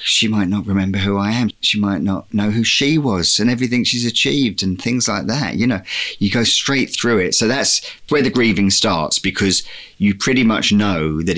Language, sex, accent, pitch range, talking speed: English, male, British, 85-100 Hz, 215 wpm